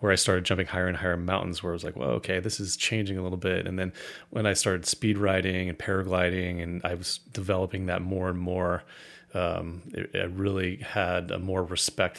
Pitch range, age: 95-110 Hz, 30-49